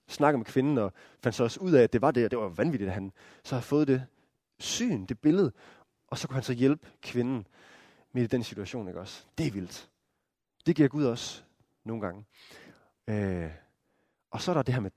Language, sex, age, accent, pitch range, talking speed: Danish, male, 20-39, native, 110-150 Hz, 220 wpm